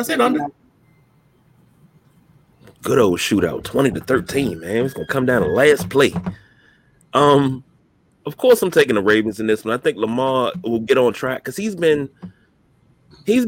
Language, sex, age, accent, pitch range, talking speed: English, male, 30-49, American, 130-165 Hz, 155 wpm